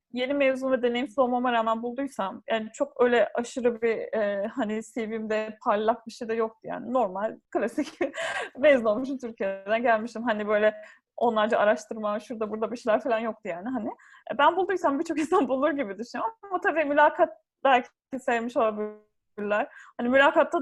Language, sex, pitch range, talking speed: Turkish, female, 215-270 Hz, 155 wpm